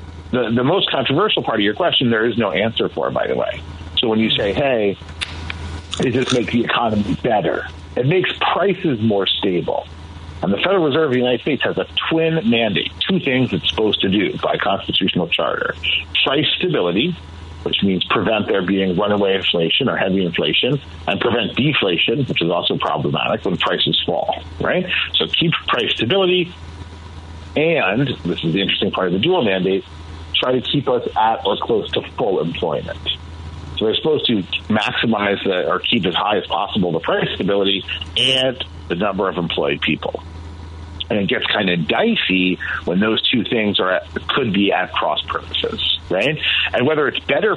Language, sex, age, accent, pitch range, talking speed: English, male, 50-69, American, 80-115 Hz, 180 wpm